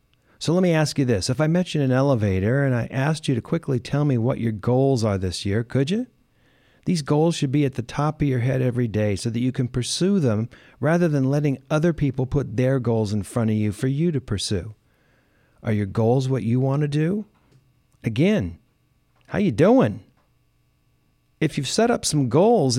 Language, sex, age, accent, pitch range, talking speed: English, male, 40-59, American, 115-145 Hz, 215 wpm